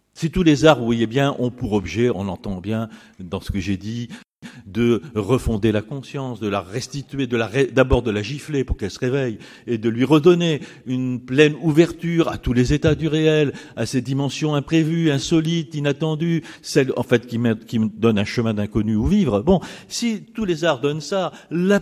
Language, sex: French, male